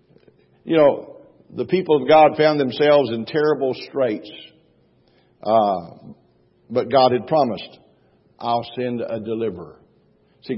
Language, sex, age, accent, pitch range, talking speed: English, male, 60-79, American, 125-160 Hz, 120 wpm